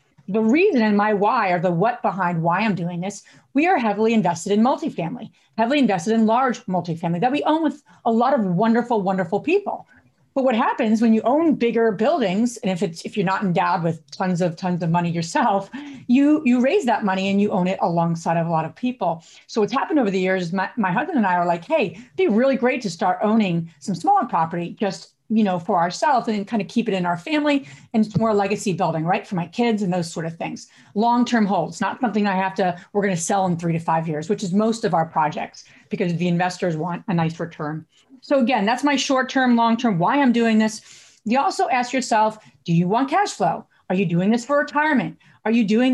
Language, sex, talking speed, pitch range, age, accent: English, female, 240 wpm, 180-245 Hz, 40-59, American